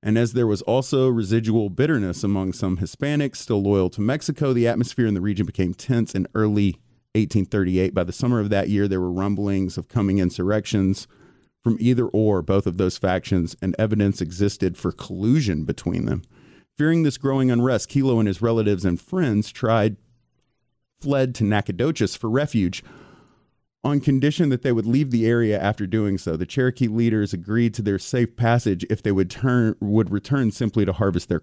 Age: 30-49